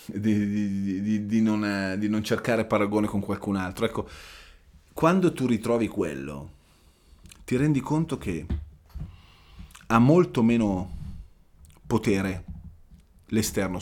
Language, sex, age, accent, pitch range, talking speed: Italian, male, 30-49, native, 80-120 Hz, 95 wpm